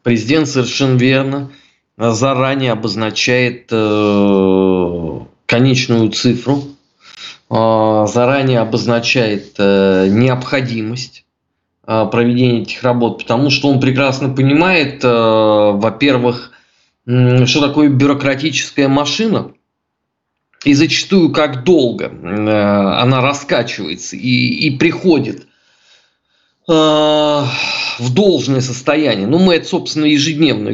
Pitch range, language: 115-150 Hz, Russian